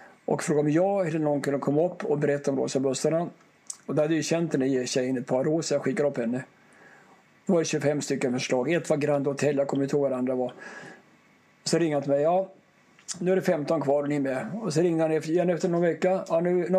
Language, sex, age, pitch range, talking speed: English, male, 50-69, 140-180 Hz, 235 wpm